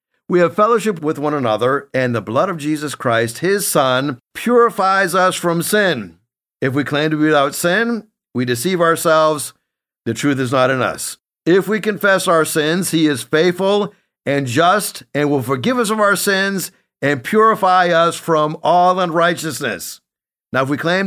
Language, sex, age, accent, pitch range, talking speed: English, male, 50-69, American, 140-200 Hz, 175 wpm